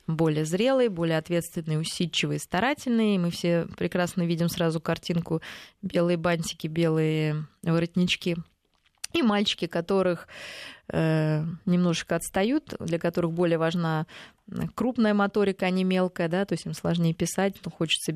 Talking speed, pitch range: 130 wpm, 165-195 Hz